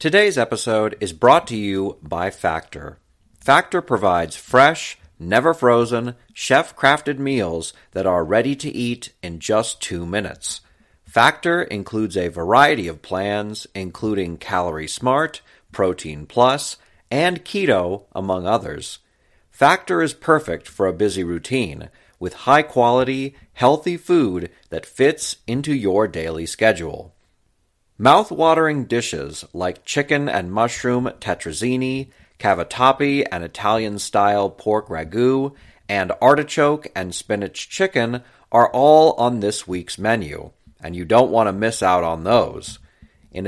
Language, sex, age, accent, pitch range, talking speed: English, male, 40-59, American, 95-140 Hz, 120 wpm